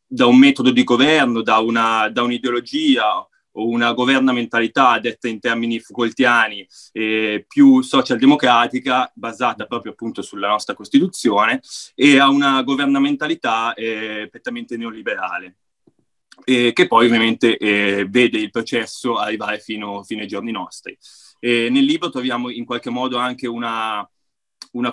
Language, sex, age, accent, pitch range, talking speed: Italian, male, 20-39, native, 110-180 Hz, 135 wpm